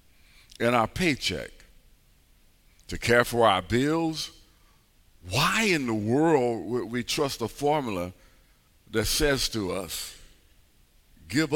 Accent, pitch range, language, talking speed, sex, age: American, 85-125 Hz, English, 115 wpm, male, 50-69